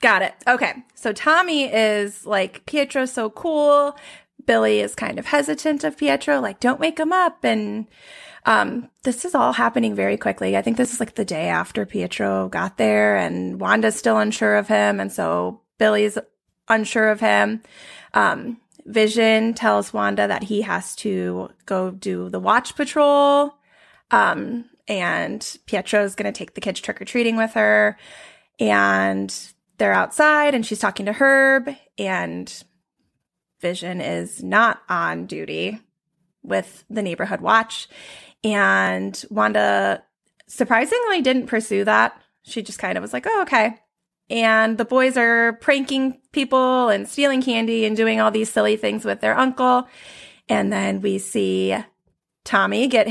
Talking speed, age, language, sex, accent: 150 wpm, 20-39, English, female, American